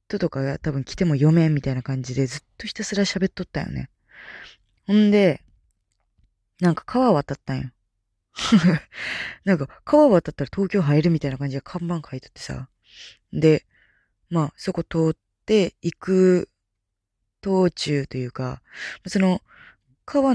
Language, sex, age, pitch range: Japanese, female, 20-39, 135-225 Hz